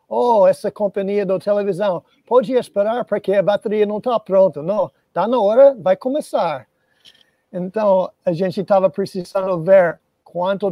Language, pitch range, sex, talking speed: Portuguese, 175-205 Hz, male, 150 wpm